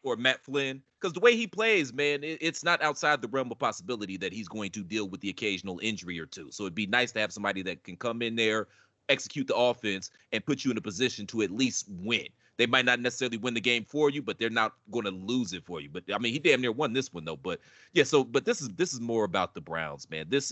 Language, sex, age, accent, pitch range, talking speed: English, male, 30-49, American, 110-165 Hz, 275 wpm